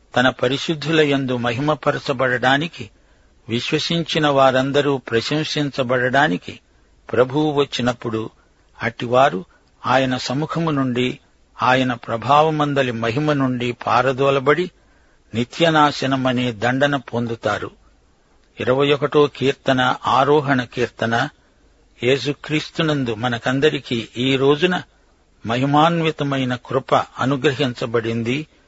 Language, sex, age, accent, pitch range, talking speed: Telugu, male, 50-69, native, 120-145 Hz, 65 wpm